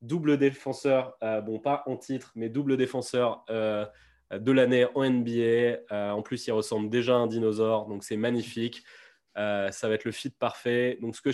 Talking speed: 195 wpm